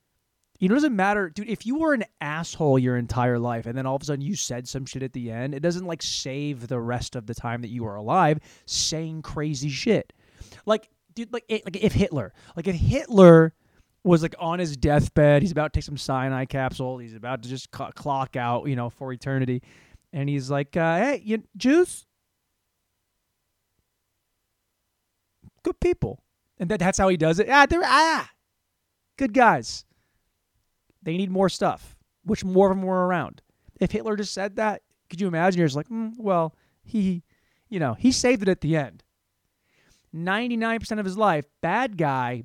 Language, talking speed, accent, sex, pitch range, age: English, 190 wpm, American, male, 120-195 Hz, 20-39